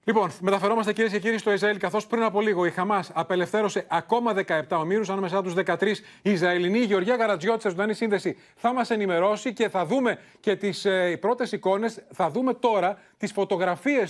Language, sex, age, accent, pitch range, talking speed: Greek, male, 30-49, native, 170-220 Hz, 180 wpm